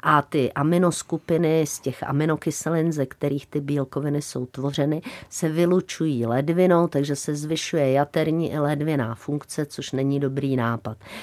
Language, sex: Czech, female